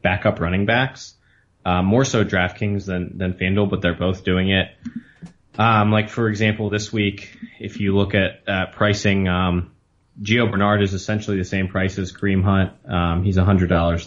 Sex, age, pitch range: male, 20-39, 90-105 Hz